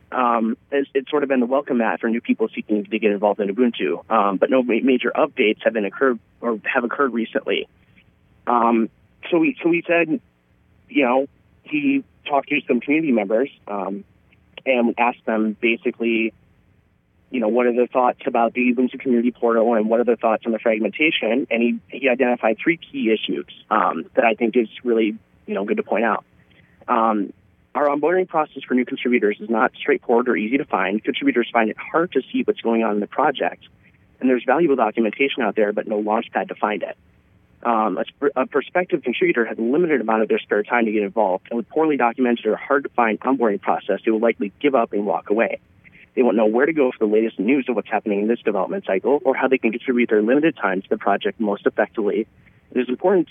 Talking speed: 220 wpm